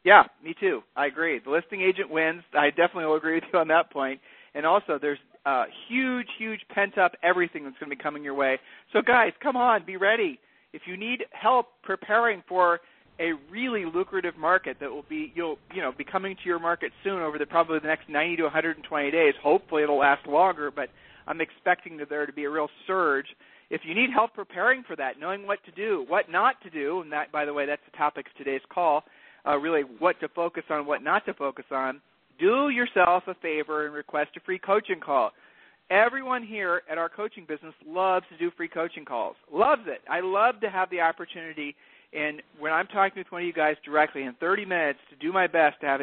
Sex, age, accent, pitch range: male, 40-59, American, 150-200 Hz